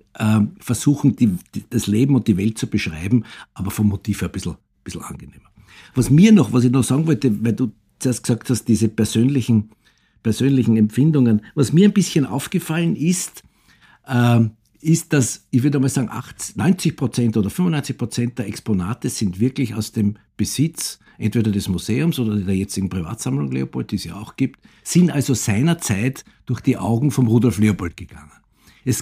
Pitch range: 105-135 Hz